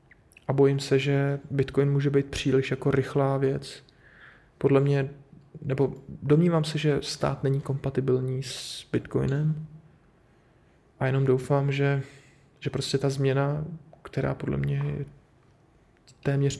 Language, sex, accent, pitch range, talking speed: Czech, male, native, 135-145 Hz, 125 wpm